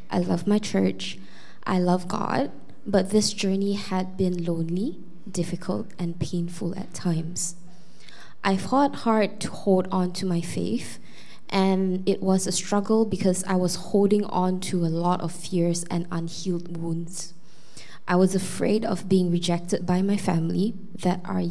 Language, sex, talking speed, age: English, female, 155 wpm, 20-39